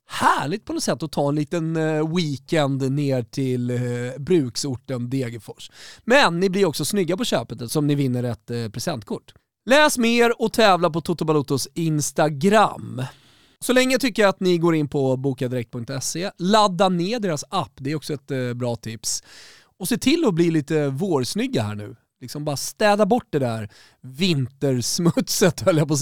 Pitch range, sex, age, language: 135-200 Hz, male, 30-49, Swedish